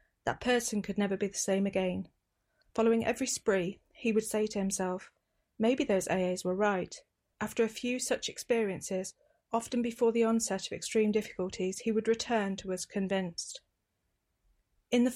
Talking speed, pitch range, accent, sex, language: 160 wpm, 190-230 Hz, British, female, English